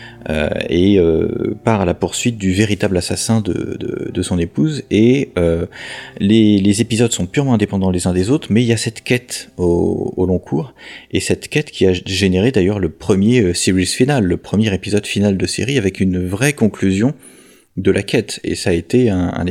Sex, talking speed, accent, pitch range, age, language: male, 205 wpm, French, 90-120 Hz, 30-49, French